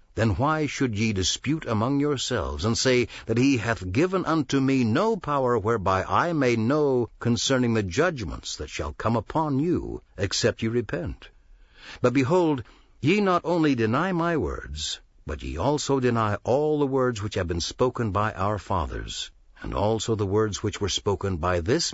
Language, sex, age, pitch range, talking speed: English, male, 60-79, 100-130 Hz, 170 wpm